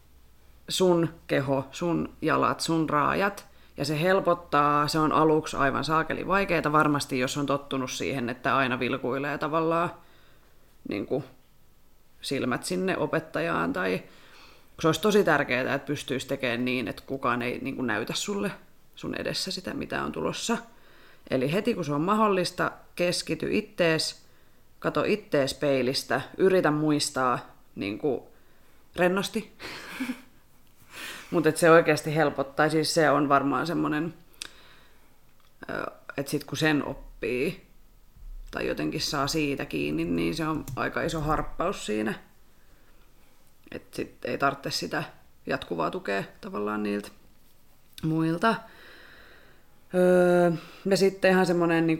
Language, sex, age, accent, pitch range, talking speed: Finnish, female, 30-49, native, 140-175 Hz, 125 wpm